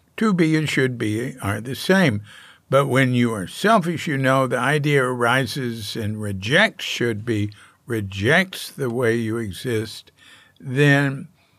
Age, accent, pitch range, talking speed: 60-79, American, 115-160 Hz, 145 wpm